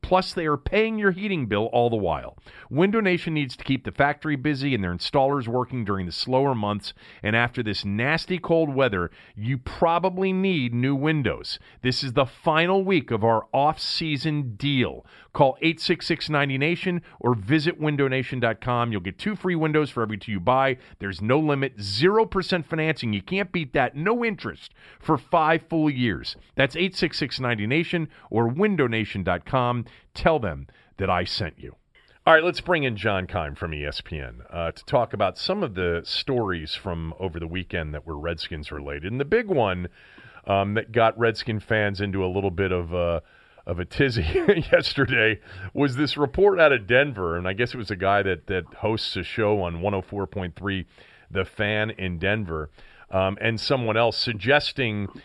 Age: 40-59